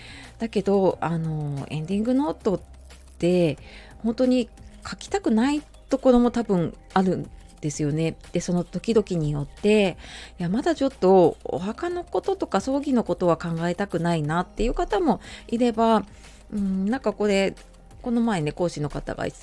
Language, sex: Japanese, female